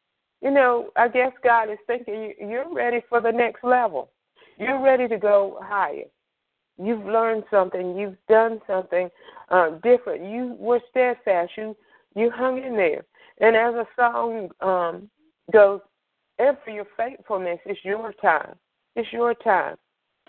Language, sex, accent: English, female, American